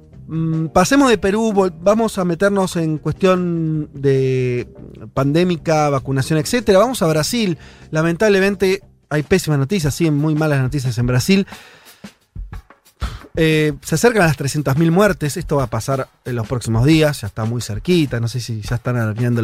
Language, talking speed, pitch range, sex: Spanish, 155 wpm, 125-165 Hz, male